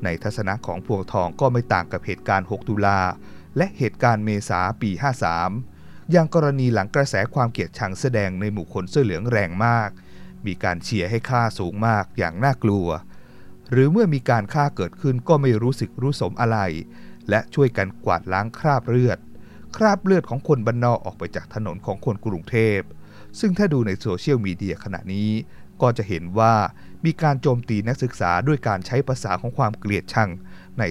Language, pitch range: Thai, 95-125 Hz